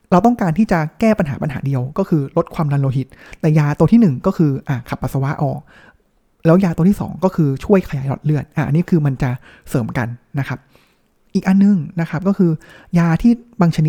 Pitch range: 140-180 Hz